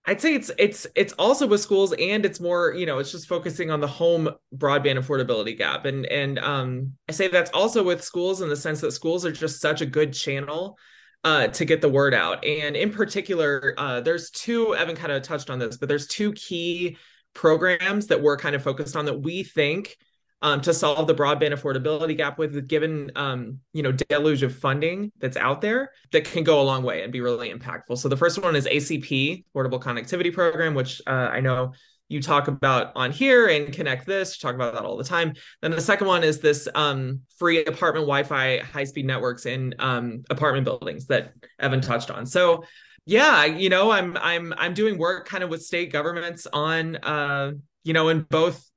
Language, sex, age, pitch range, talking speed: English, male, 20-39, 140-175 Hz, 210 wpm